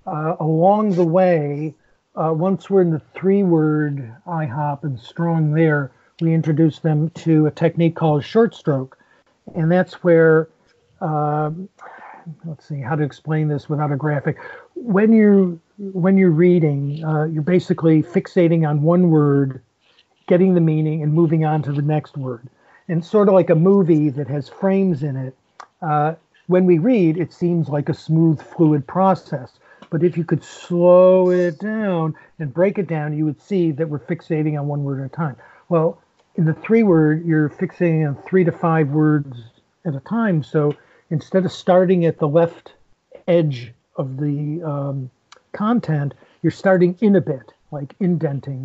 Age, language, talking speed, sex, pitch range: 50-69, English, 170 wpm, male, 150-180 Hz